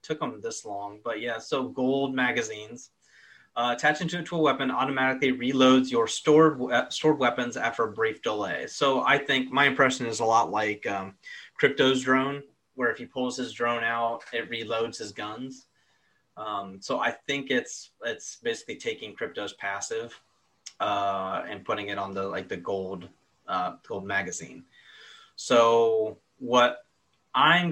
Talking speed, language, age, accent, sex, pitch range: 160 wpm, English, 30-49, American, male, 105-145 Hz